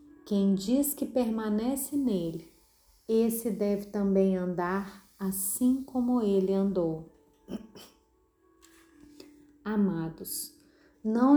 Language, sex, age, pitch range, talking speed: Portuguese, female, 30-49, 190-250 Hz, 80 wpm